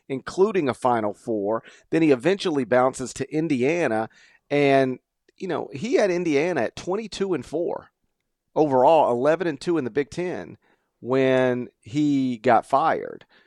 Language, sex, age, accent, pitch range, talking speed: English, male, 40-59, American, 115-150 Hz, 145 wpm